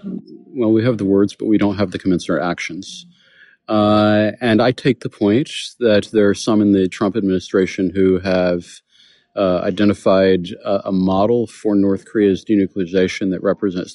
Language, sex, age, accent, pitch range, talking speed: English, male, 40-59, American, 95-105 Hz, 170 wpm